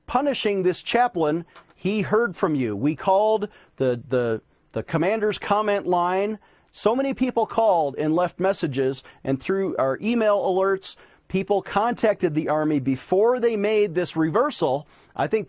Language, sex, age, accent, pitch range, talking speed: English, male, 40-59, American, 150-210 Hz, 145 wpm